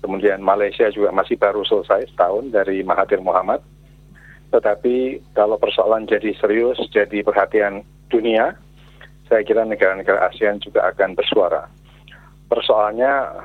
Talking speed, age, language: 115 wpm, 40-59, Indonesian